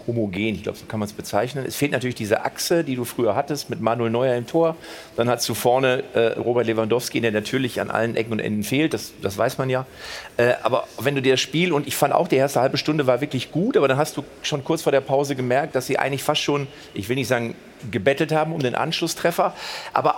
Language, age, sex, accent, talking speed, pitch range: German, 40-59, male, German, 255 wpm, 130-165 Hz